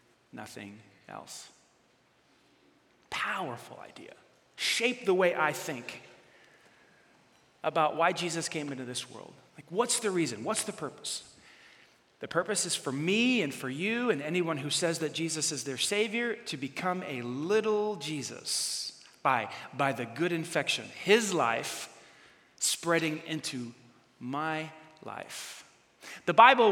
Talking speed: 130 wpm